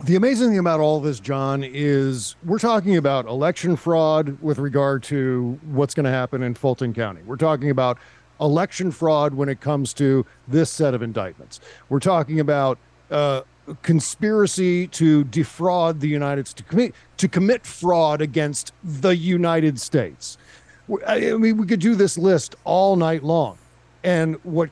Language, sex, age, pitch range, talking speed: English, male, 40-59, 135-175 Hz, 165 wpm